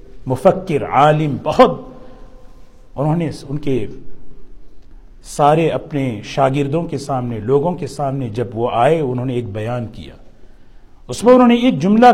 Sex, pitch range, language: male, 125-180 Hz, English